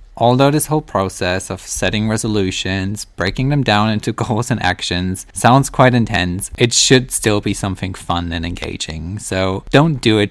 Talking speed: 170 wpm